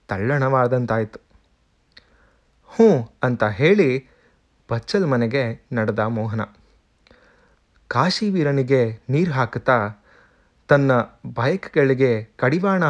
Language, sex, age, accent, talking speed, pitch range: Kannada, male, 30-49, native, 65 wpm, 110-145 Hz